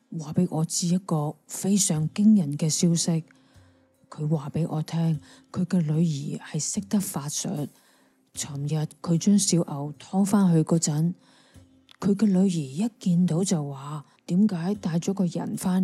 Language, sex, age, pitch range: Chinese, female, 20-39, 155-195 Hz